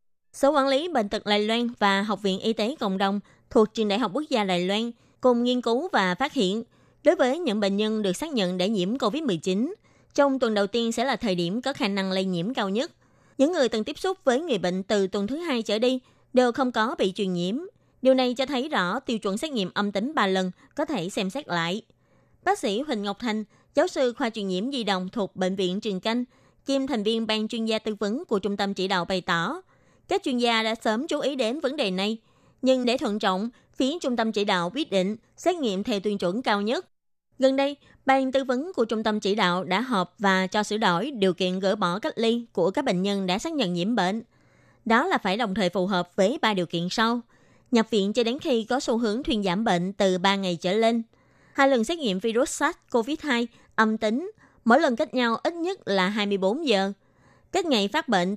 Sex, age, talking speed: female, 20-39, 240 wpm